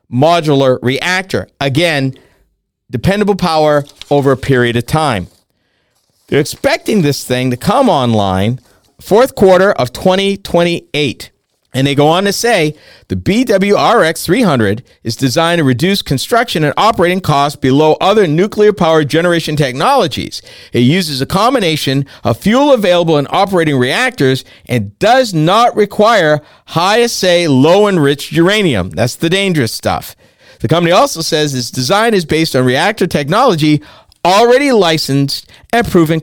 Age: 50-69